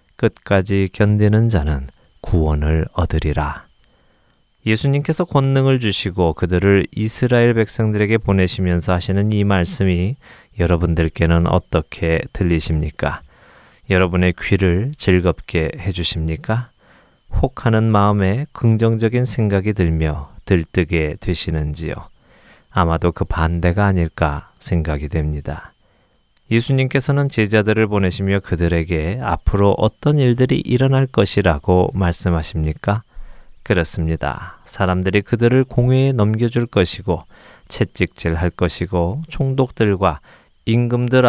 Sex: male